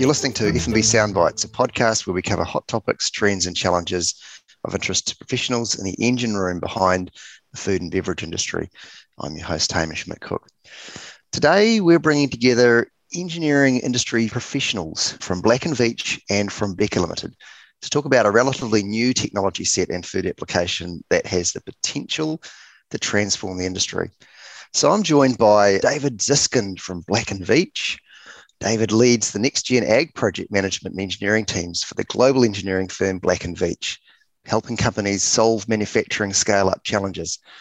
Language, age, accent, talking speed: English, 30-49, Australian, 165 wpm